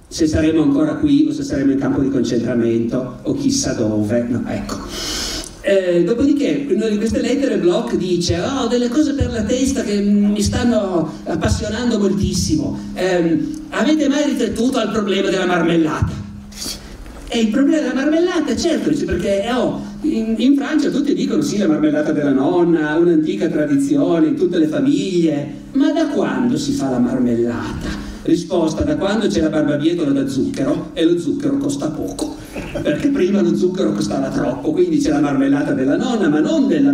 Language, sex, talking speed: Italian, male, 165 wpm